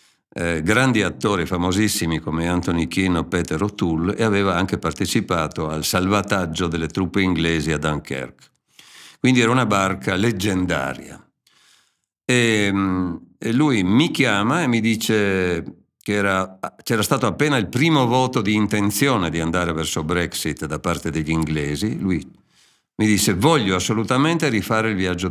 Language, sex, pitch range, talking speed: Italian, male, 85-115 Hz, 140 wpm